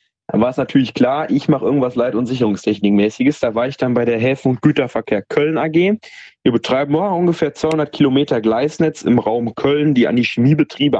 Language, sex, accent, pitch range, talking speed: German, male, German, 115-145 Hz, 190 wpm